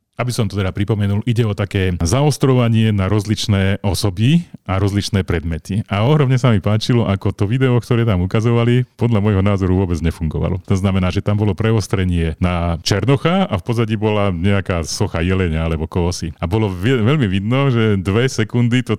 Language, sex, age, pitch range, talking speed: Slovak, male, 40-59, 85-110 Hz, 175 wpm